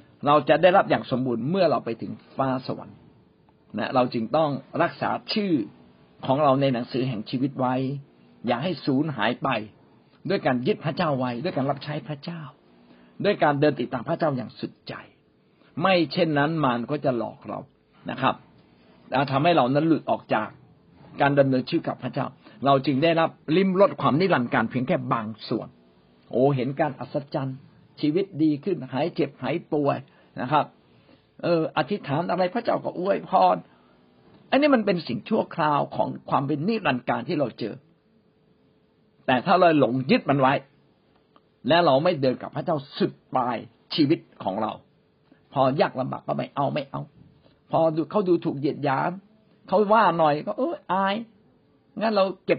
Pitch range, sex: 130-185 Hz, male